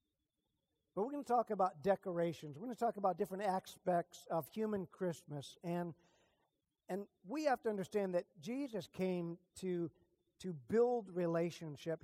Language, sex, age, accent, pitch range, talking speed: English, male, 50-69, American, 180-230 Hz, 145 wpm